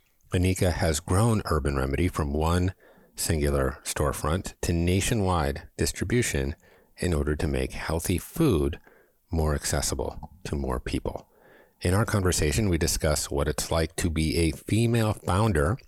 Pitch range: 75-95 Hz